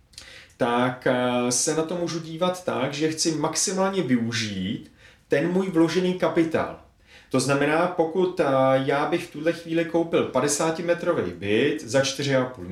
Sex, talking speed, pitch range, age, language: male, 130 wpm, 120-155 Hz, 30-49, Czech